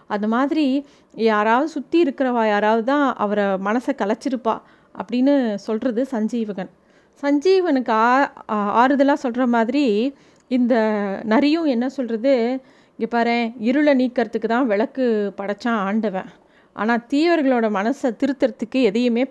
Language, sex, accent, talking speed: Tamil, female, native, 105 wpm